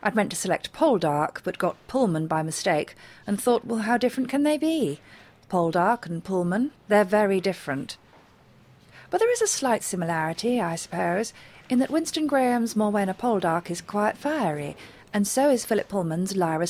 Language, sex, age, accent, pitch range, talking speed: English, female, 40-59, British, 165-230 Hz, 170 wpm